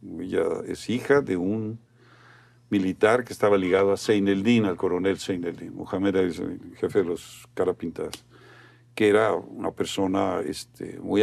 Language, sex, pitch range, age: Portuguese, male, 105-125 Hz, 50-69